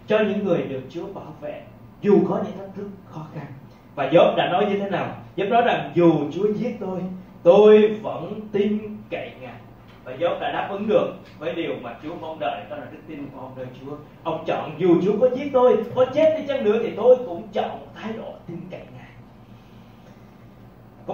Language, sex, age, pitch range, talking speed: Vietnamese, male, 20-39, 150-210 Hz, 215 wpm